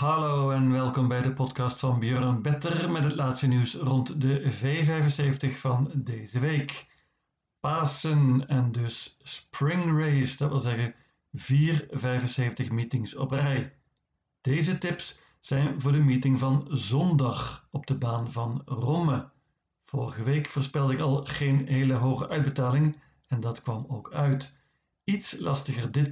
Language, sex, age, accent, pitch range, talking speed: Dutch, male, 50-69, Dutch, 130-145 Hz, 140 wpm